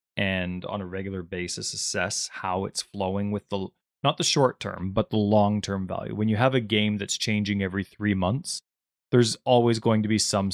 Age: 20-39